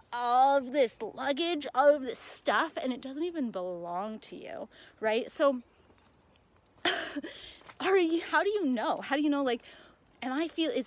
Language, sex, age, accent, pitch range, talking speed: English, female, 20-39, American, 225-295 Hz, 175 wpm